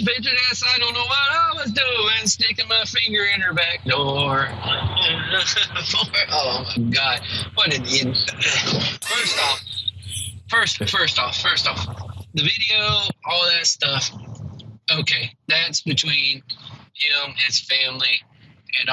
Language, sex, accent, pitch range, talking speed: English, male, American, 130-175 Hz, 120 wpm